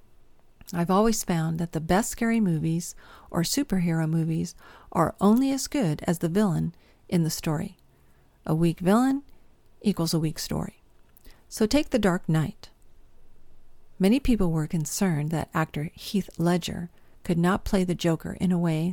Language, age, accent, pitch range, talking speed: English, 50-69, American, 160-205 Hz, 155 wpm